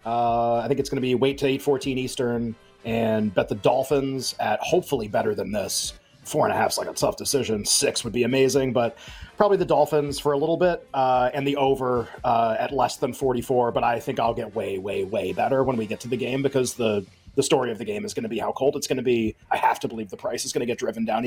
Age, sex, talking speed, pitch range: 30-49, male, 265 wpm, 125-150 Hz